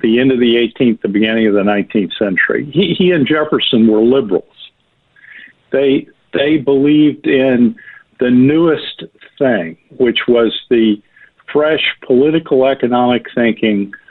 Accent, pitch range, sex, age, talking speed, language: American, 115-140 Hz, male, 50-69, 130 wpm, English